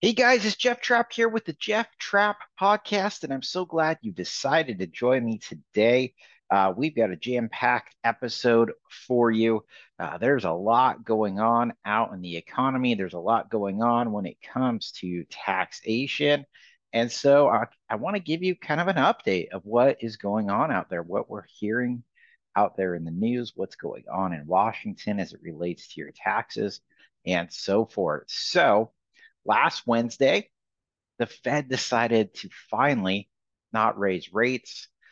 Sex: male